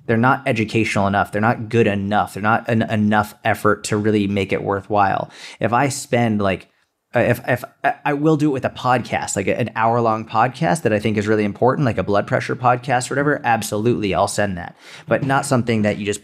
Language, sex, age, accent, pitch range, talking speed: English, male, 20-39, American, 100-115 Hz, 220 wpm